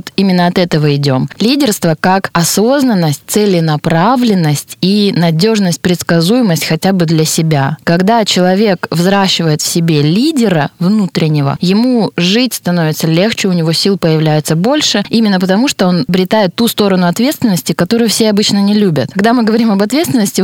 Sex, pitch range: female, 165-210 Hz